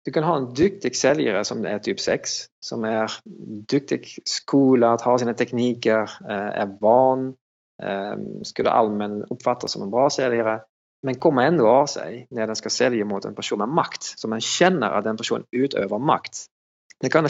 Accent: Norwegian